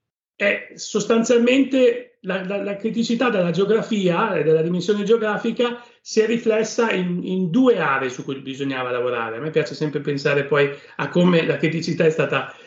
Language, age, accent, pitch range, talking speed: Italian, 40-59, native, 155-215 Hz, 165 wpm